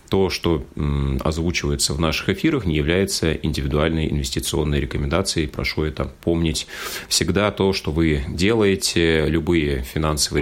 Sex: male